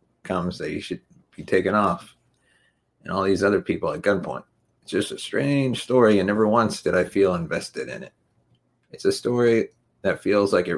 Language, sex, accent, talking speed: English, male, American, 195 wpm